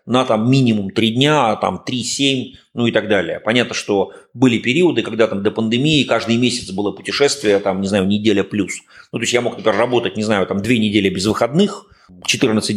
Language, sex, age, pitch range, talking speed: Russian, male, 30-49, 100-125 Hz, 200 wpm